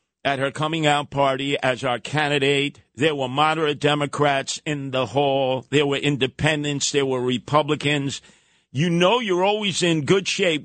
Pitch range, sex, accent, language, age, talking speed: 125-150 Hz, male, American, English, 50-69, 160 wpm